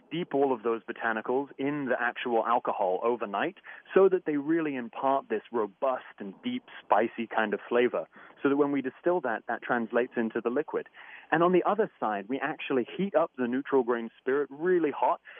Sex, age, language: male, 30-49, English